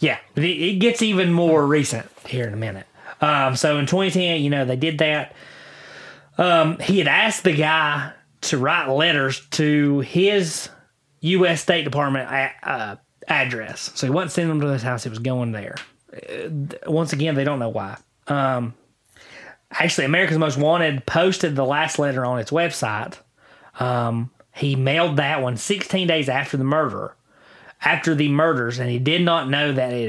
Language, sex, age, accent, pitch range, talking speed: English, male, 20-39, American, 125-160 Hz, 170 wpm